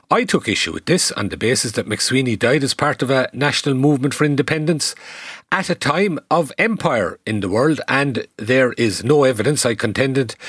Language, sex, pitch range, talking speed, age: English, male, 110-150 Hz, 195 wpm, 40-59